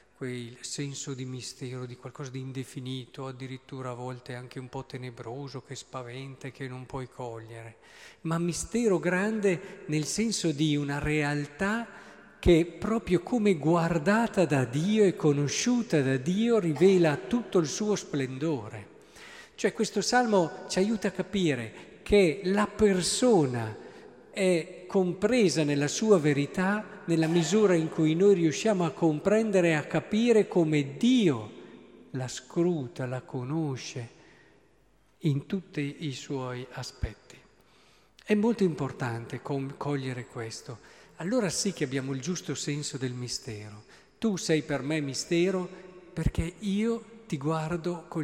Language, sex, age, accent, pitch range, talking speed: Italian, male, 50-69, native, 135-195 Hz, 135 wpm